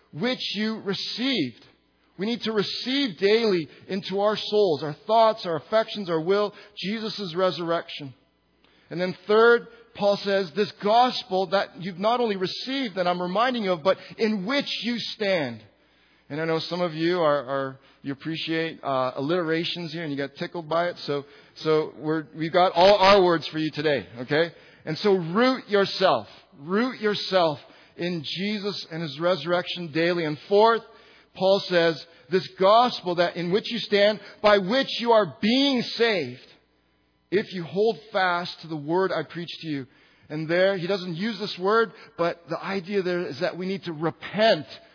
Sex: male